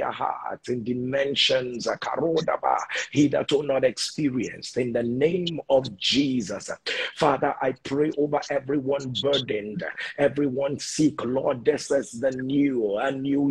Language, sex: English, male